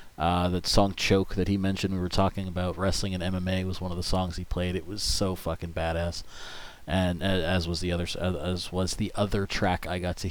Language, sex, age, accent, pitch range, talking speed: English, male, 30-49, American, 90-105 Hz, 215 wpm